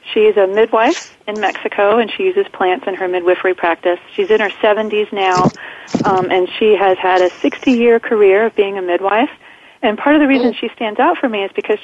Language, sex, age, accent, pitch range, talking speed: English, female, 30-49, American, 180-225 Hz, 215 wpm